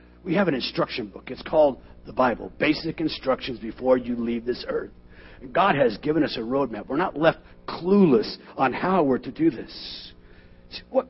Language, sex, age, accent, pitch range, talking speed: English, male, 50-69, American, 115-135 Hz, 180 wpm